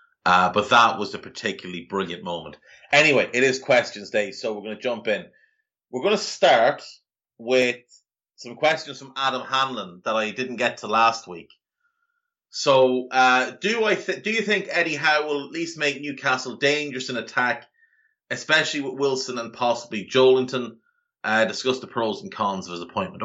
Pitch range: 120-170 Hz